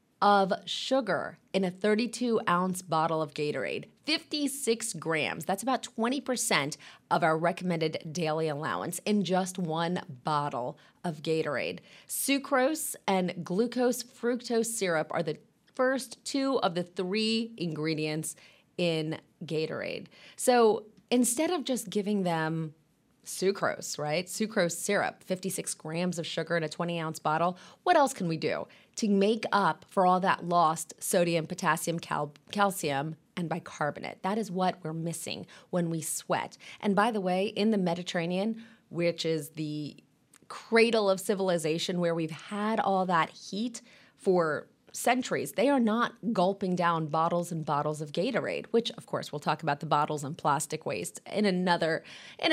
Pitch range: 165-220 Hz